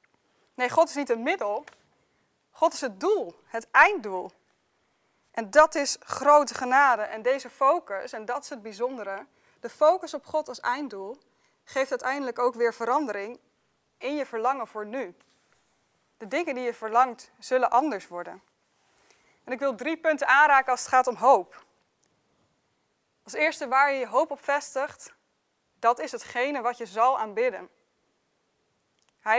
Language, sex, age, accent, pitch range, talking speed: Dutch, female, 20-39, Dutch, 230-285 Hz, 155 wpm